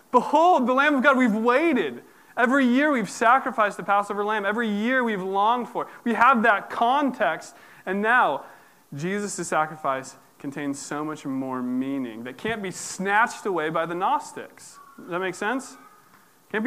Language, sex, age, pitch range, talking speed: English, male, 20-39, 155-225 Hz, 165 wpm